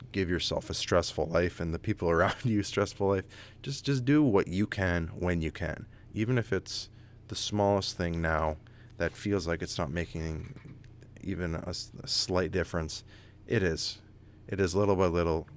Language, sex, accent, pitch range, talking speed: English, male, American, 95-115 Hz, 175 wpm